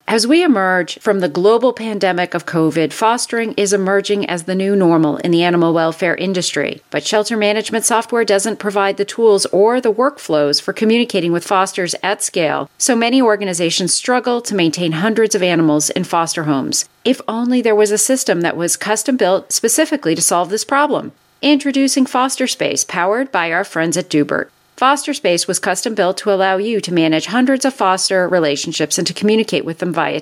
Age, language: 40-59, English